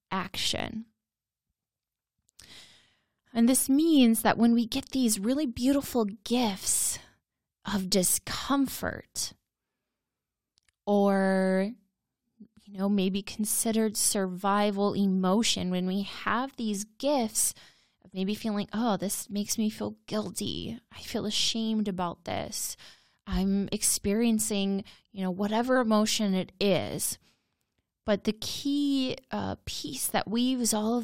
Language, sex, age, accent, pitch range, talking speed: English, female, 20-39, American, 200-235 Hz, 110 wpm